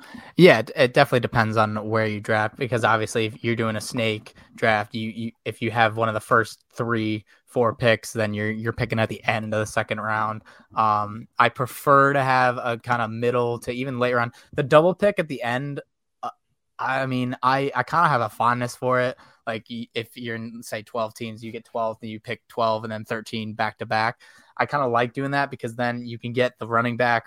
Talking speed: 235 wpm